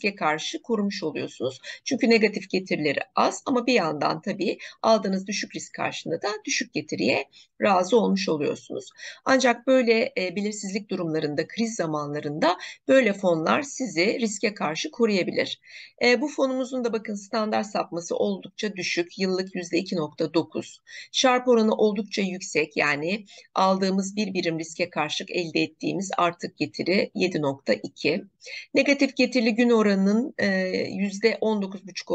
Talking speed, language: 120 wpm, Turkish